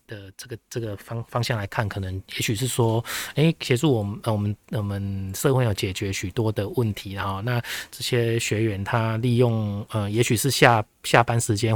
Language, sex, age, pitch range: Chinese, male, 20-39, 105-125 Hz